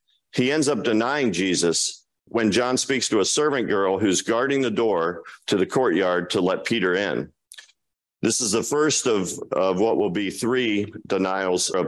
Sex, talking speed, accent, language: male, 175 wpm, American, English